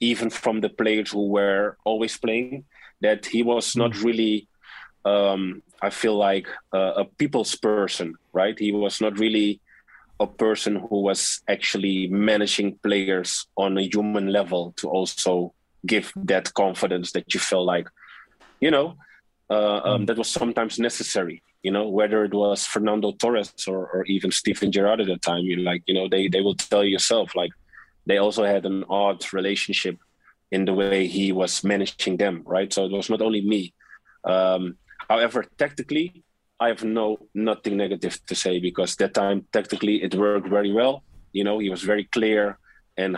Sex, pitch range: male, 95-105 Hz